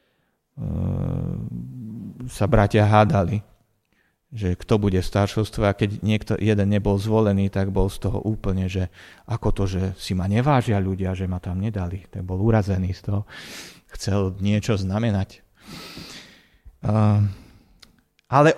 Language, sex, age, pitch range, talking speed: Slovak, male, 30-49, 105-150 Hz, 125 wpm